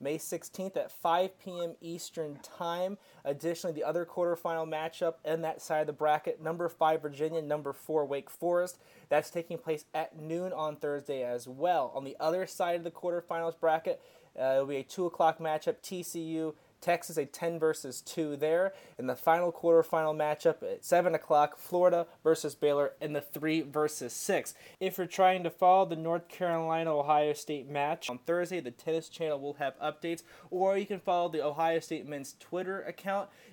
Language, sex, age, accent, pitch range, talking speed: English, male, 20-39, American, 150-175 Hz, 180 wpm